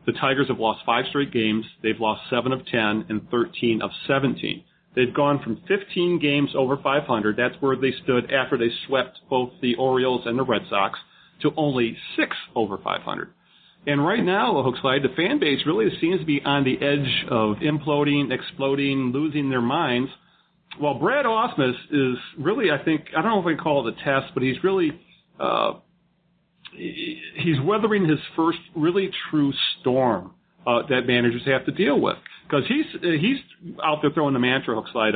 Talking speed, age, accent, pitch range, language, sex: 185 wpm, 40-59, American, 125-175 Hz, English, male